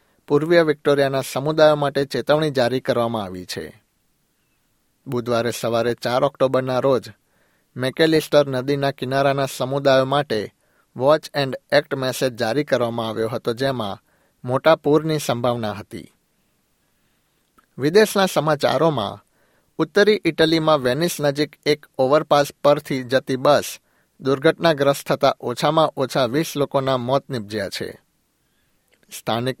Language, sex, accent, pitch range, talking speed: Gujarati, male, native, 125-150 Hz, 95 wpm